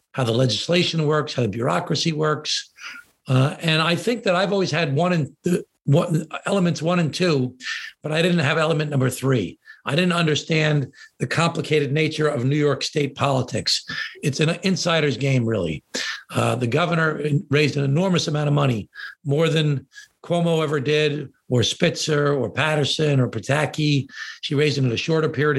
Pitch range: 140-170 Hz